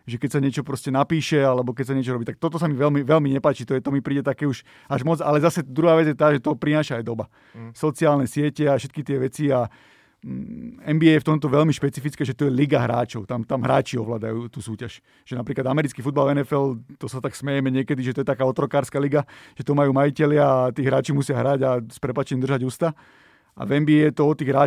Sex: male